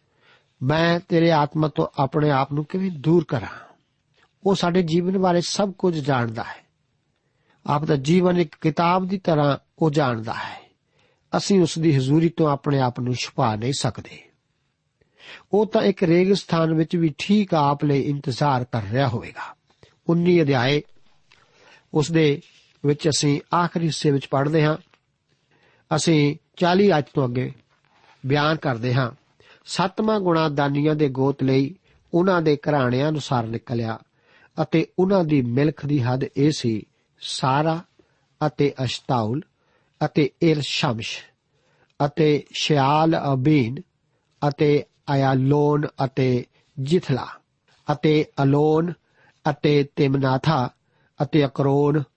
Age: 60-79